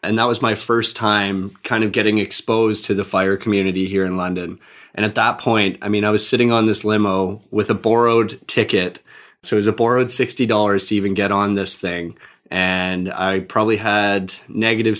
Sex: male